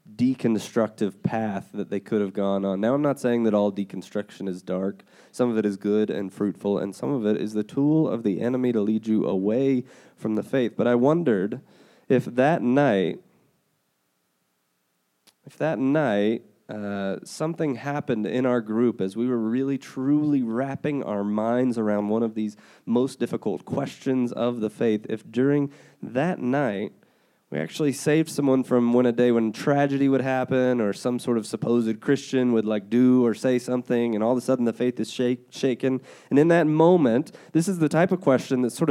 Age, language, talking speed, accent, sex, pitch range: 20-39, English, 190 wpm, American, male, 105-140 Hz